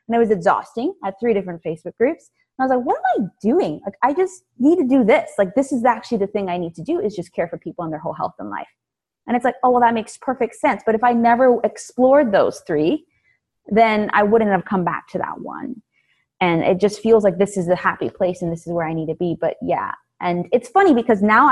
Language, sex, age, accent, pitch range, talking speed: English, female, 20-39, American, 175-255 Hz, 270 wpm